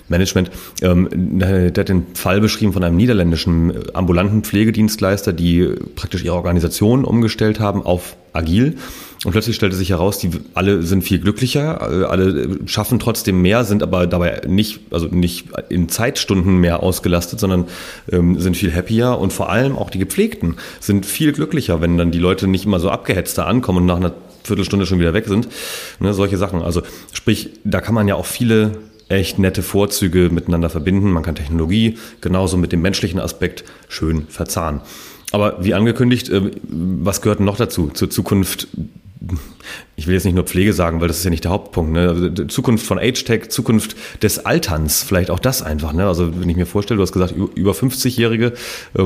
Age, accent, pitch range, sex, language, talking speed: 30-49, German, 90-105 Hz, male, German, 175 wpm